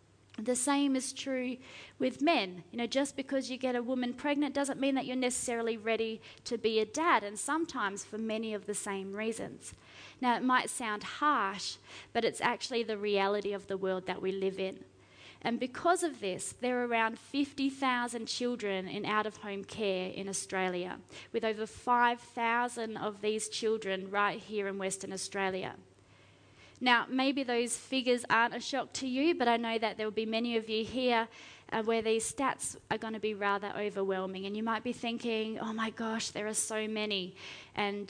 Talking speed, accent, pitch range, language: 190 wpm, Australian, 200-255 Hz, English